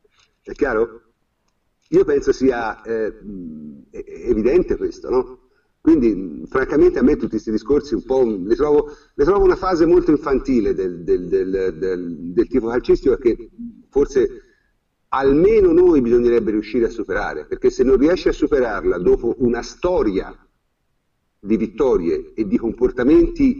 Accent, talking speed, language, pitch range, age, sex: native, 140 wpm, Italian, 325-405 Hz, 50-69, male